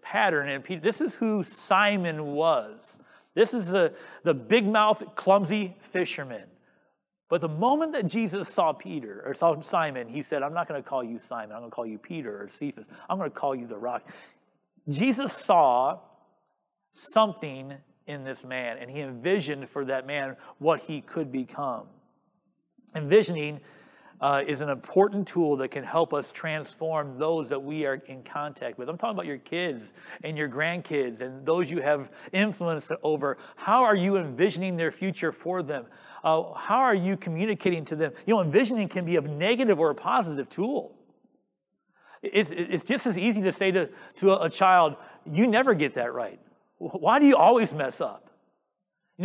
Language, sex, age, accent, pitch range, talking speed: English, male, 40-59, American, 145-200 Hz, 175 wpm